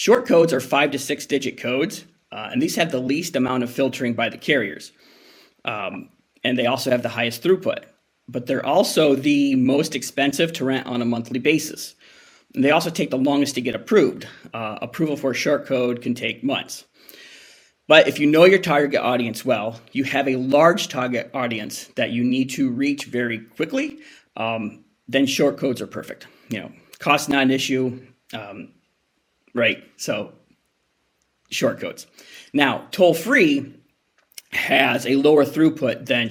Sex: male